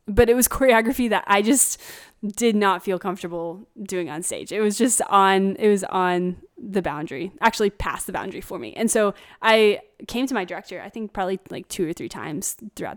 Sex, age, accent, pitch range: female, 20-39, American, 190-230 Hz